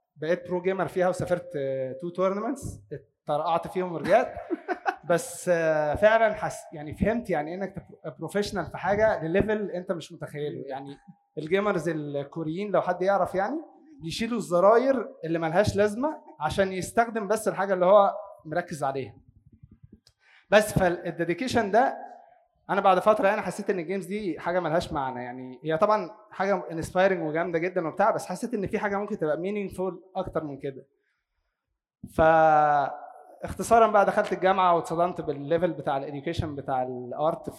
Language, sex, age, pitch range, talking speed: English, male, 20-39, 155-200 Hz, 140 wpm